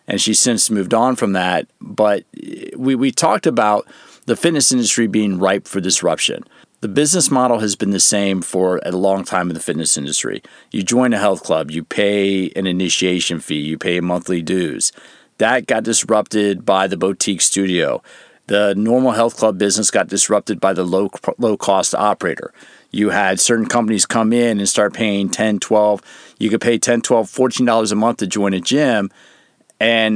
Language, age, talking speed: English, 40-59, 180 wpm